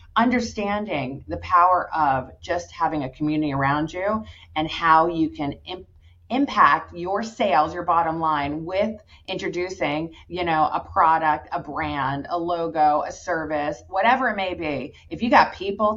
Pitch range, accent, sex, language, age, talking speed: 140-195 Hz, American, female, English, 30-49, 155 wpm